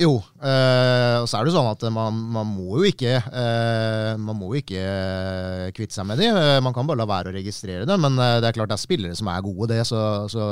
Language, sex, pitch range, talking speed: English, male, 115-140 Hz, 225 wpm